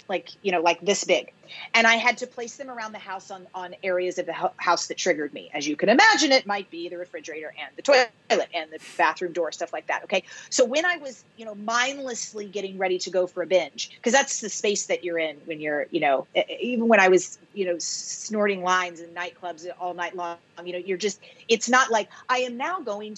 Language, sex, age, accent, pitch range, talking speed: English, female, 30-49, American, 180-255 Hz, 240 wpm